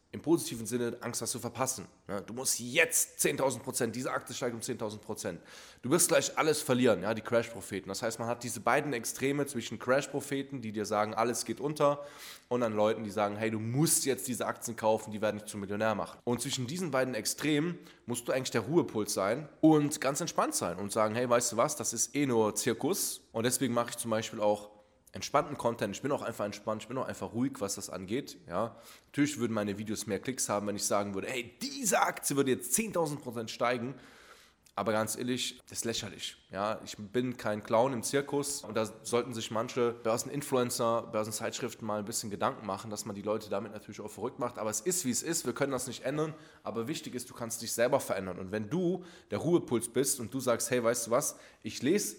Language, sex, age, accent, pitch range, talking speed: German, male, 20-39, German, 105-130 Hz, 225 wpm